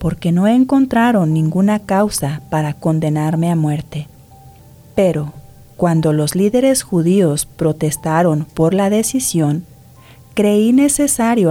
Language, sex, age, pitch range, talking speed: English, female, 40-59, 150-205 Hz, 105 wpm